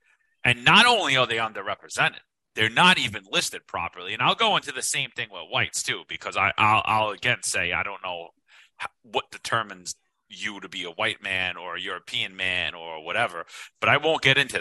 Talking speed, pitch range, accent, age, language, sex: 200 wpm, 105-135 Hz, American, 30-49, English, male